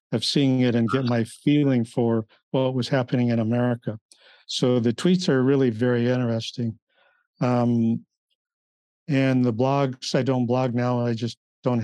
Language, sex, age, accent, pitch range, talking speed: English, male, 50-69, American, 120-135 Hz, 155 wpm